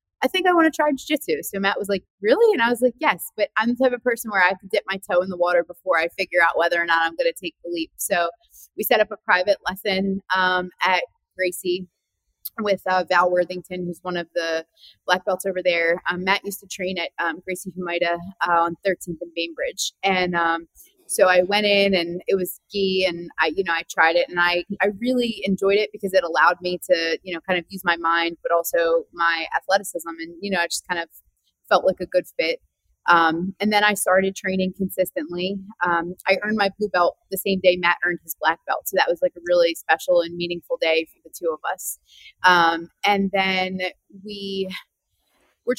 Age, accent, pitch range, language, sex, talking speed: 20-39, American, 175-205 Hz, English, female, 230 wpm